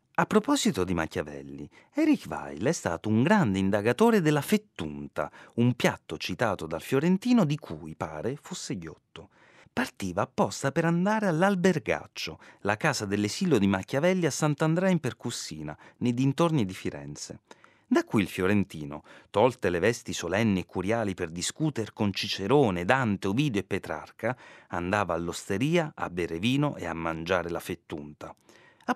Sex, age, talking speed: male, 40-59, 145 wpm